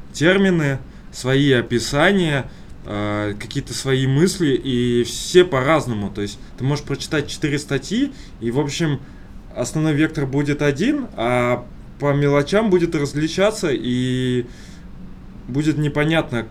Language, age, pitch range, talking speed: Russian, 20-39, 110-140 Hz, 115 wpm